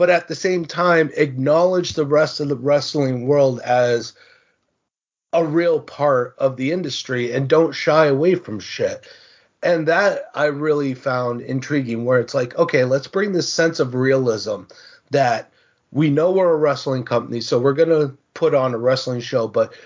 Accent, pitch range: American, 125-155 Hz